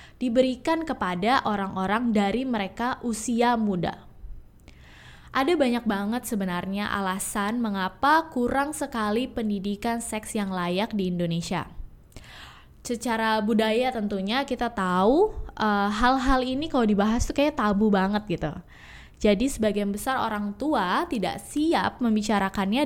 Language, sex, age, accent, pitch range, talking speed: English, female, 10-29, Indonesian, 200-255 Hz, 115 wpm